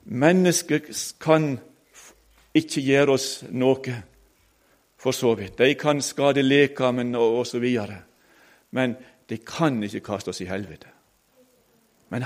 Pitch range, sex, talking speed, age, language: 130-175 Hz, male, 120 wpm, 60-79, English